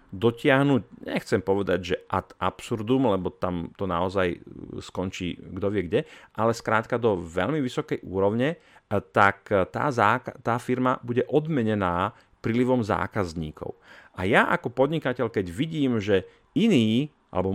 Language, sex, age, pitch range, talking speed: Slovak, male, 40-59, 95-130 Hz, 130 wpm